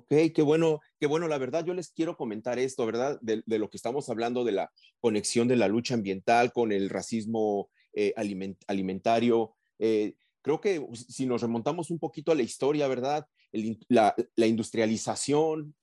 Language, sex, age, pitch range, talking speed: Spanish, male, 30-49, 115-155 Hz, 180 wpm